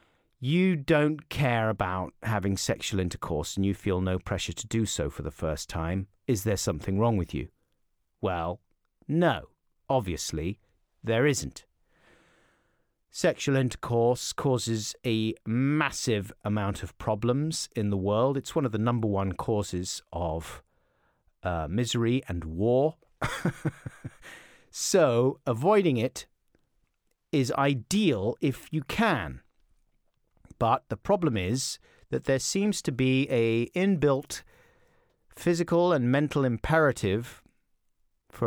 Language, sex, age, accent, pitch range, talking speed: English, male, 40-59, British, 100-150 Hz, 120 wpm